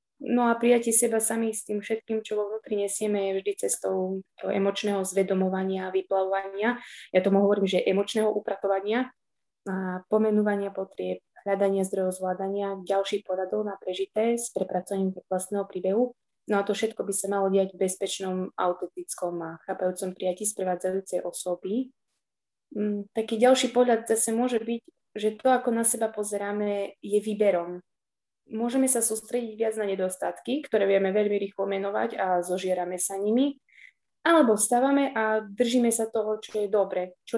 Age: 20-39